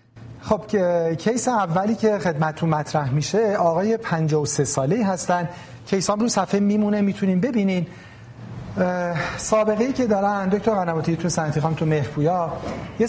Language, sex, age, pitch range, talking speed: Persian, male, 40-59, 150-185 Hz, 130 wpm